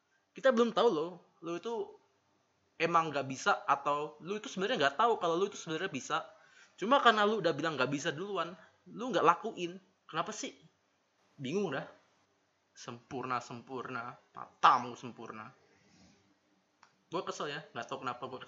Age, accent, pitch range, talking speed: 20-39, native, 130-155 Hz, 150 wpm